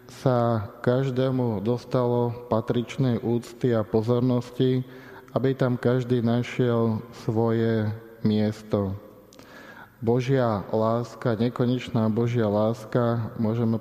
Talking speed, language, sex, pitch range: 85 wpm, Slovak, male, 110-125 Hz